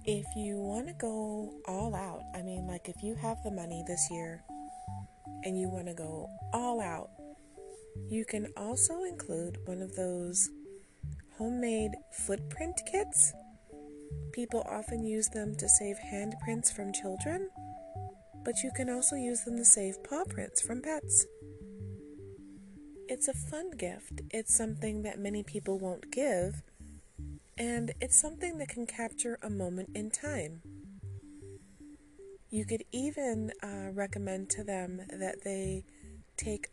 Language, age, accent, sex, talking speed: English, 30-49, American, female, 140 wpm